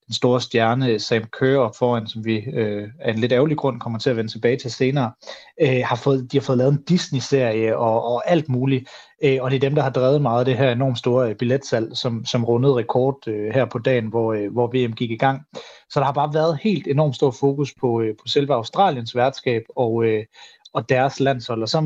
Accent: native